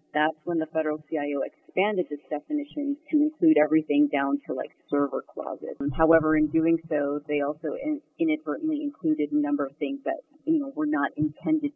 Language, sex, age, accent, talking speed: English, female, 30-49, American, 180 wpm